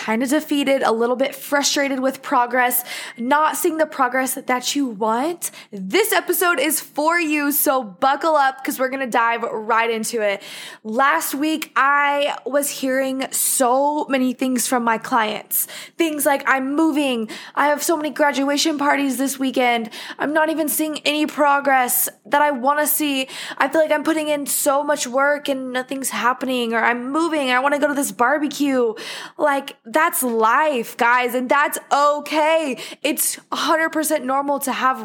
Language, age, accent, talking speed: English, 20-39, American, 175 wpm